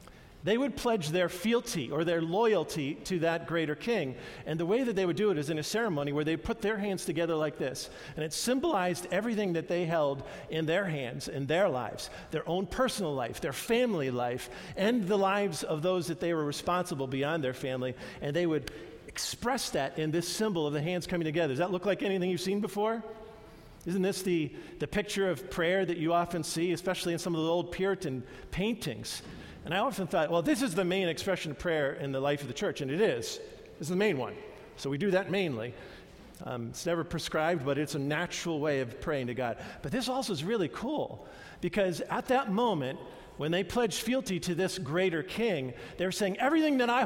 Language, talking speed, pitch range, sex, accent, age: English, 220 wpm, 155-205 Hz, male, American, 50-69